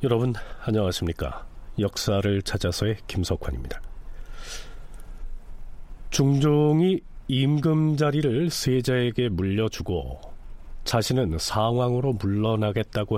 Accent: native